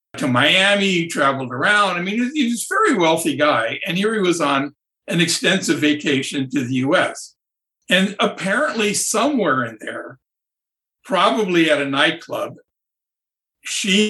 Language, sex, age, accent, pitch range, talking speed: English, male, 60-79, American, 160-225 Hz, 135 wpm